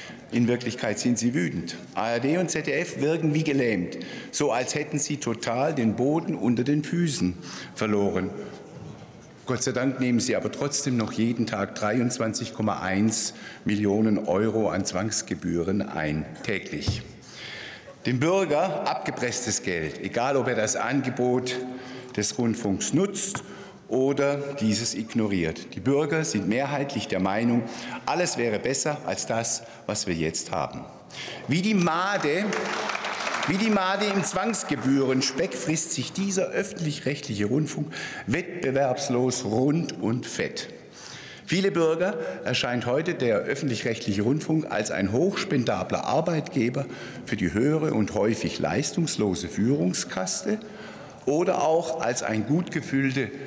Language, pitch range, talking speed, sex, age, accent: German, 110-150 Hz, 120 wpm, male, 50-69, German